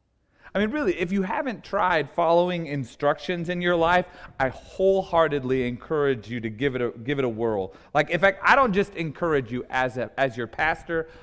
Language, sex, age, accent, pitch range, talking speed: English, male, 30-49, American, 125-170 Hz, 205 wpm